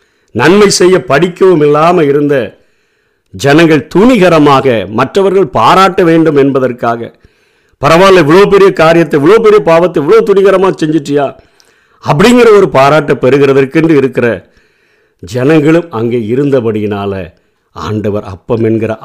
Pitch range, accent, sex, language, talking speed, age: 120-160 Hz, native, male, Tamil, 100 wpm, 50-69